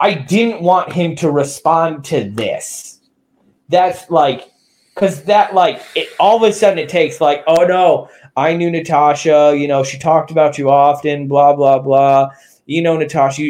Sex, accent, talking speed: male, American, 175 wpm